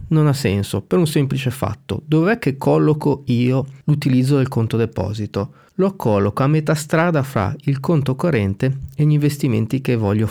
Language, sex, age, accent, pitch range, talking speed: Italian, male, 40-59, native, 110-150 Hz, 170 wpm